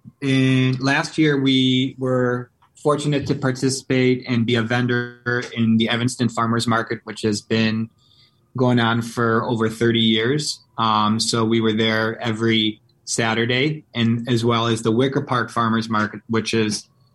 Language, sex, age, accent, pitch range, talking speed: English, male, 20-39, American, 115-130 Hz, 155 wpm